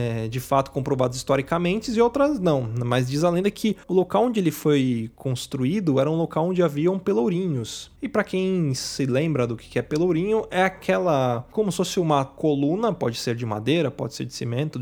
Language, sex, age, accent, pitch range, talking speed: Portuguese, male, 20-39, Brazilian, 130-185 Hz, 195 wpm